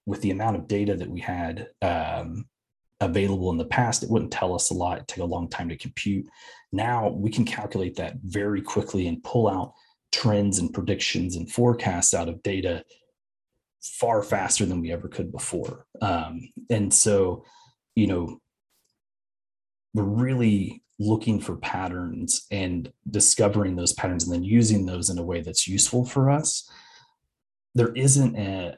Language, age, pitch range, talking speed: English, 30-49, 90-115 Hz, 165 wpm